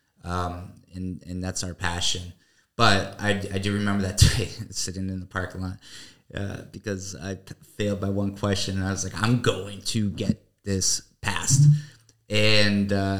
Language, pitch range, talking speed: English, 90-105 Hz, 175 wpm